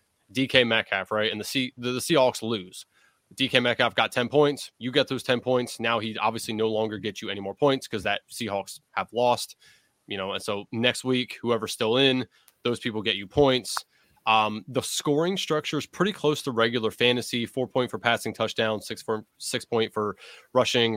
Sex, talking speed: male, 200 wpm